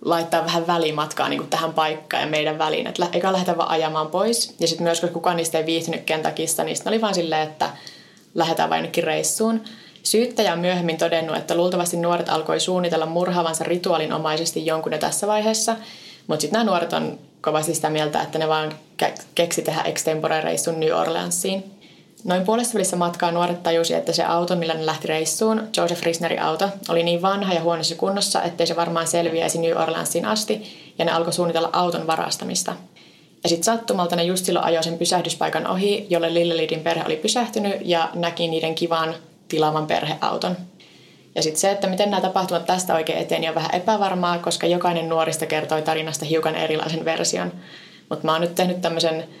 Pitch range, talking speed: 160-180 Hz, 175 wpm